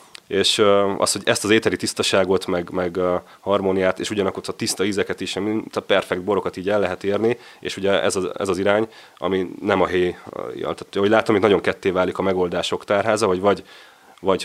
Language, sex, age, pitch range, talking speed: Hungarian, male, 30-49, 90-100 Hz, 205 wpm